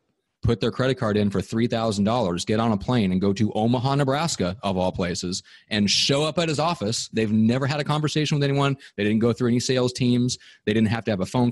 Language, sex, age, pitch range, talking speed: English, male, 30-49, 95-115 Hz, 240 wpm